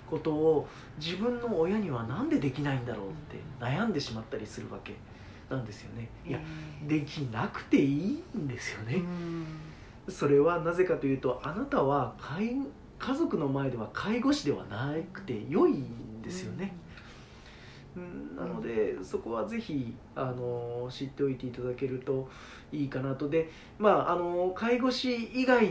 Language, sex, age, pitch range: Japanese, male, 40-59, 125-190 Hz